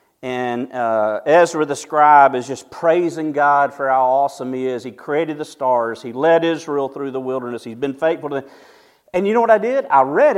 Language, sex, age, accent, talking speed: English, male, 40-59, American, 215 wpm